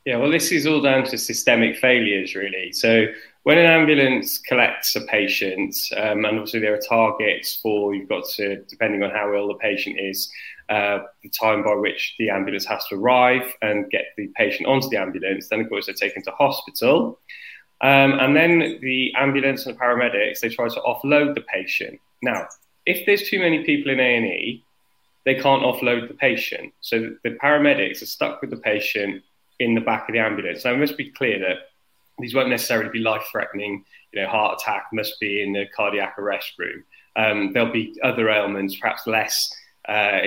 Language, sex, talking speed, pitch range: English, male, 195 wpm, 105-135 Hz